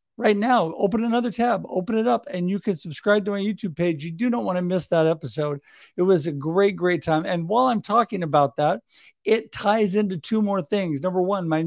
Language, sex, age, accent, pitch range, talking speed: English, male, 50-69, American, 165-215 Hz, 230 wpm